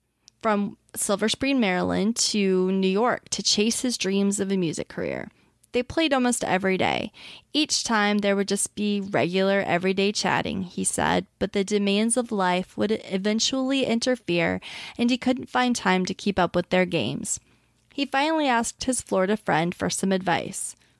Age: 20-39